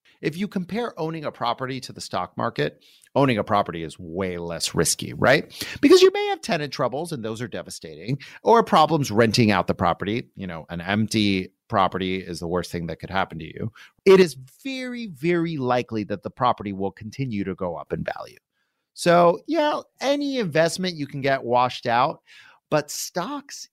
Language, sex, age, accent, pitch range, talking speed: English, male, 30-49, American, 110-185 Hz, 185 wpm